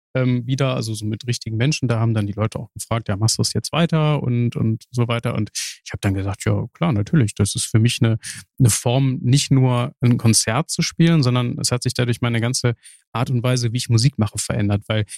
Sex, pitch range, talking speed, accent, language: male, 120-145 Hz, 235 wpm, German, German